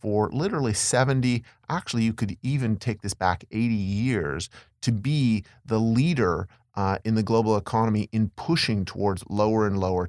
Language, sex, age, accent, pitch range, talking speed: English, male, 30-49, American, 105-135 Hz, 160 wpm